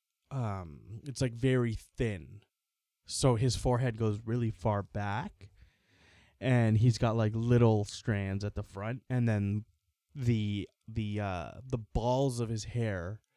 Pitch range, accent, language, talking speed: 105-140 Hz, American, English, 140 wpm